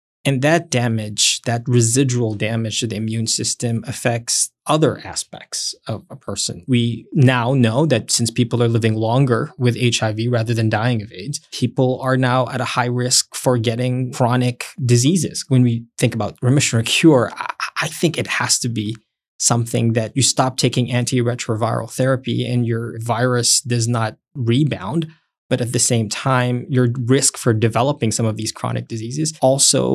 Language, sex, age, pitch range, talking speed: English, male, 20-39, 115-130 Hz, 170 wpm